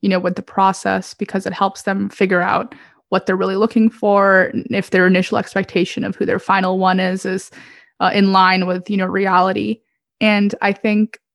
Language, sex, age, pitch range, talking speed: English, female, 20-39, 185-215 Hz, 195 wpm